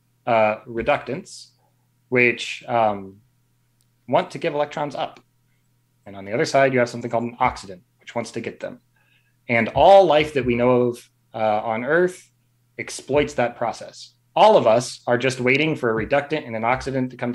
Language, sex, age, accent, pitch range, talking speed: English, male, 20-39, American, 120-130 Hz, 180 wpm